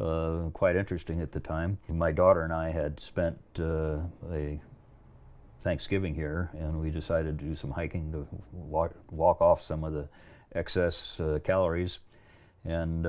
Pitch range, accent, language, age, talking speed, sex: 80-90 Hz, American, English, 50-69, 155 wpm, male